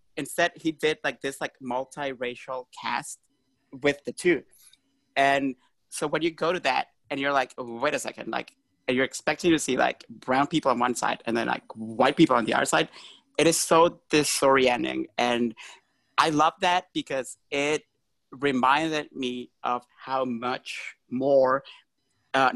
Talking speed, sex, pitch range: 160 wpm, male, 125-150 Hz